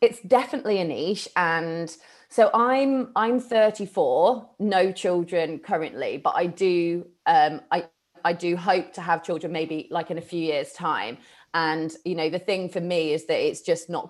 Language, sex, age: English, female, 30-49